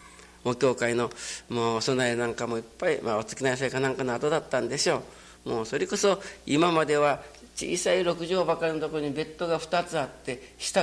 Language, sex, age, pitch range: Japanese, male, 60-79, 115-175 Hz